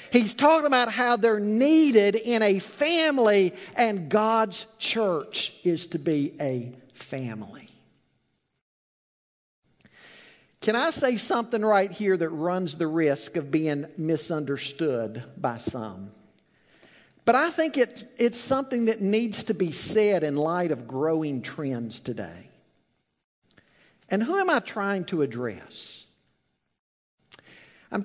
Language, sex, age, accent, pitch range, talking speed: English, male, 50-69, American, 160-225 Hz, 120 wpm